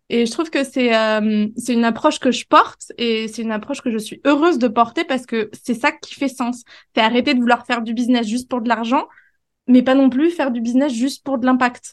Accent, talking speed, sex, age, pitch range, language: French, 255 wpm, female, 20-39, 230-275 Hz, French